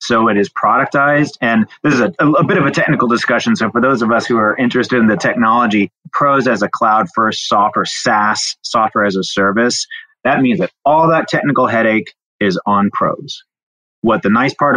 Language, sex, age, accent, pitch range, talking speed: English, male, 30-49, American, 100-125 Hz, 200 wpm